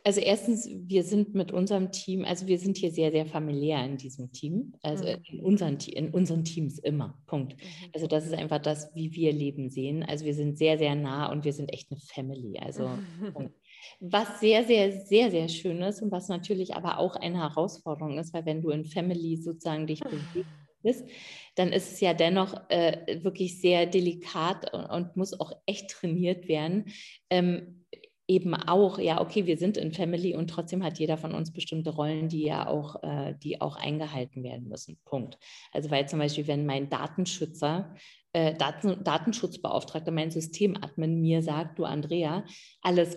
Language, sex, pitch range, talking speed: German, female, 155-185 Hz, 175 wpm